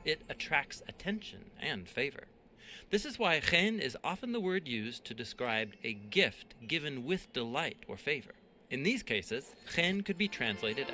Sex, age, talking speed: male, 40-59, 165 wpm